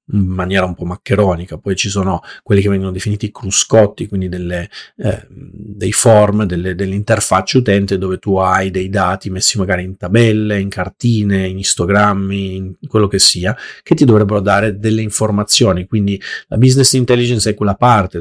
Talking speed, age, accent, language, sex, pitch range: 160 wpm, 40-59, native, Italian, male, 95-115 Hz